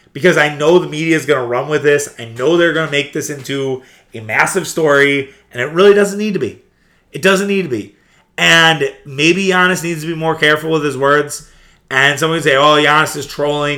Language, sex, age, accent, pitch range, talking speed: English, male, 30-49, American, 125-155 Hz, 225 wpm